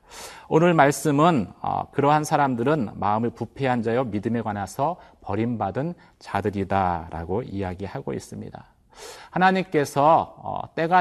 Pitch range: 105-155 Hz